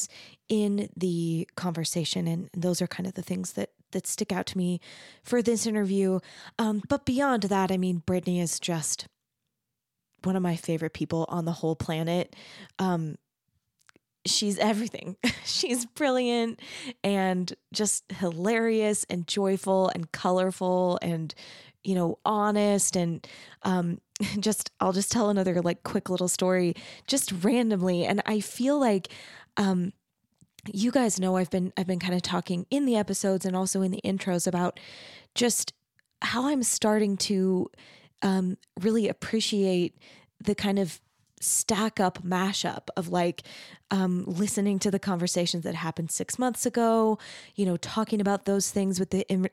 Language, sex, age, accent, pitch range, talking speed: English, female, 20-39, American, 180-210 Hz, 150 wpm